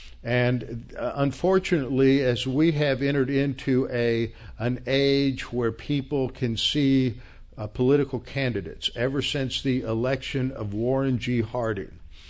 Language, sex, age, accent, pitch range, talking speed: English, male, 50-69, American, 110-130 Hz, 125 wpm